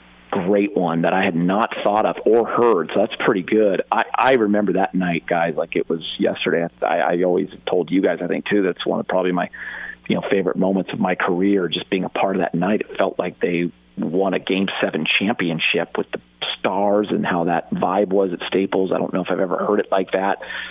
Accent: American